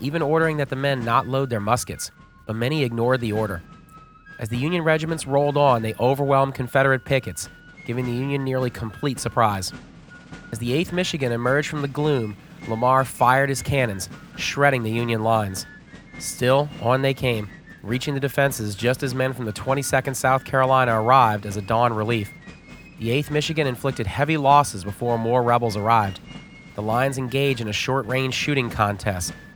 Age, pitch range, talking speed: 30-49, 115-140 Hz, 175 wpm